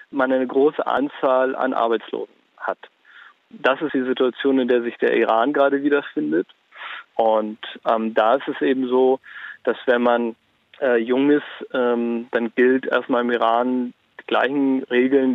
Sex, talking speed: male, 155 wpm